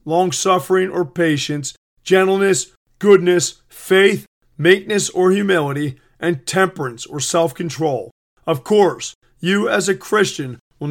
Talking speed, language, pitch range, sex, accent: 110 wpm, English, 155-190 Hz, male, American